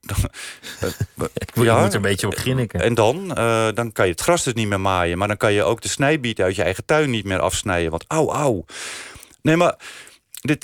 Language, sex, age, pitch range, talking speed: Dutch, male, 40-59, 95-130 Hz, 220 wpm